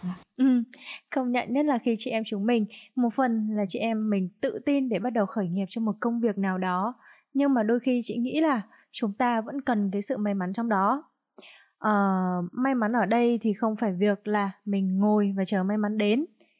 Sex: female